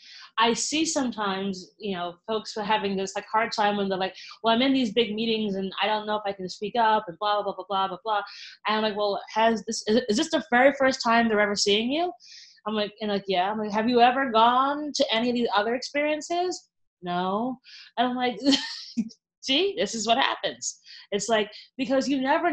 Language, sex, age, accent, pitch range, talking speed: English, female, 20-39, American, 205-265 Hz, 225 wpm